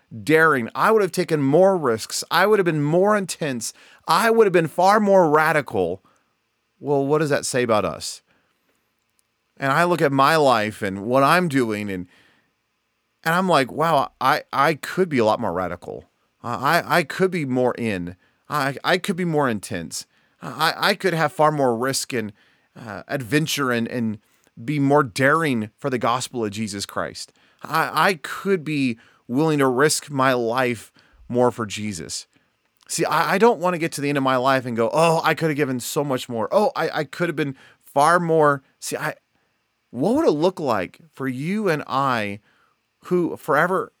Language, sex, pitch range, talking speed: English, male, 120-160 Hz, 190 wpm